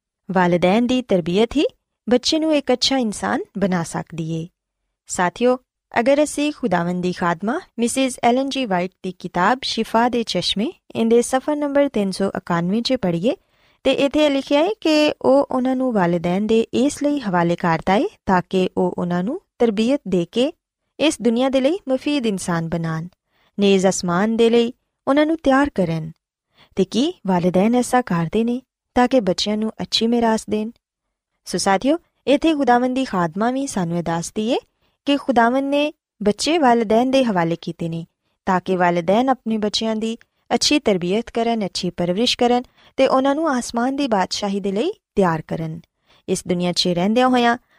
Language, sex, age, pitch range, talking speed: Punjabi, female, 20-39, 185-260 Hz, 145 wpm